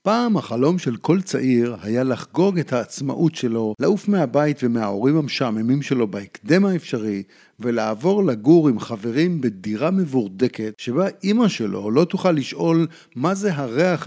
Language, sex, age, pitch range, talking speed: Hebrew, male, 50-69, 125-190 Hz, 135 wpm